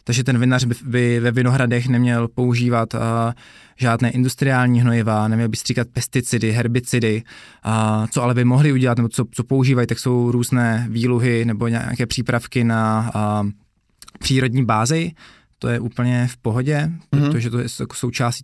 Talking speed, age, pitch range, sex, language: 155 wpm, 20-39, 115-130 Hz, male, Slovak